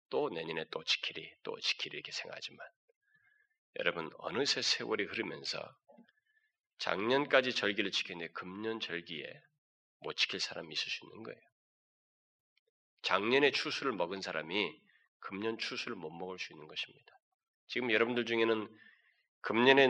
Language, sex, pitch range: Korean, male, 110-165 Hz